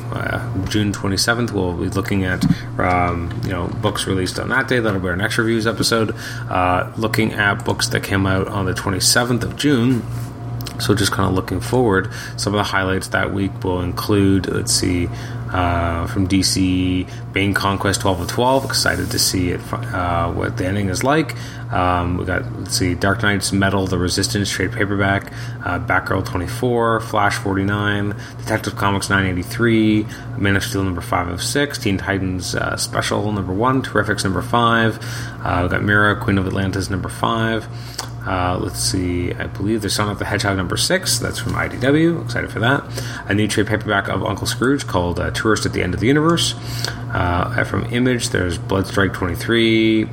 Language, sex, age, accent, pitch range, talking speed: English, male, 30-49, American, 95-120 Hz, 190 wpm